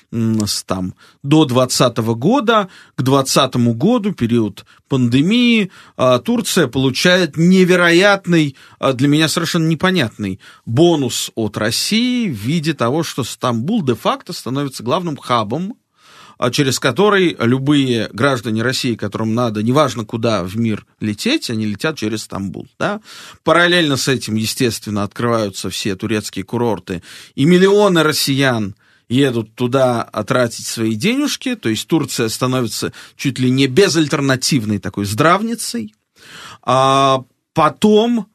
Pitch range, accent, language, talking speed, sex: 110-160 Hz, native, Russian, 110 wpm, male